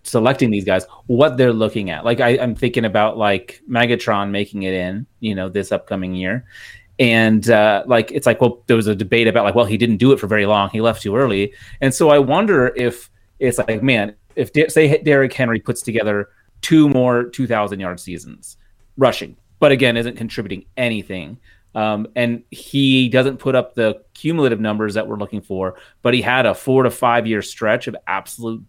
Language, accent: English, American